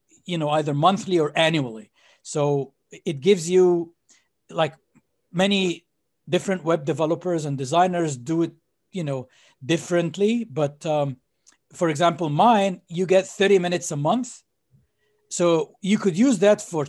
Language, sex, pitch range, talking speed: English, male, 155-195 Hz, 140 wpm